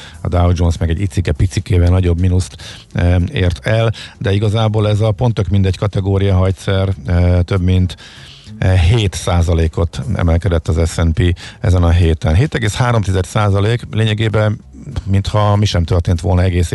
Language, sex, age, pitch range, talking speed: Hungarian, male, 50-69, 90-105 Hz, 145 wpm